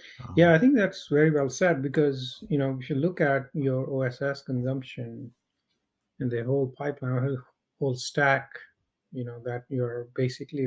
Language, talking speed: English, 165 wpm